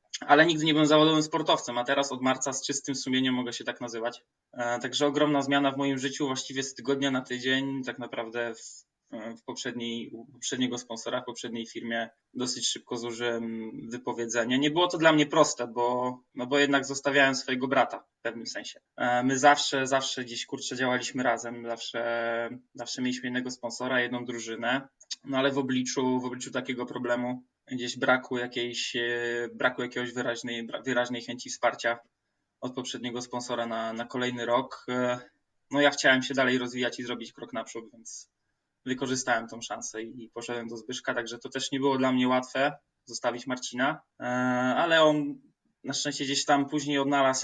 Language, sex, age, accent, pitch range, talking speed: Polish, male, 20-39, native, 120-135 Hz, 170 wpm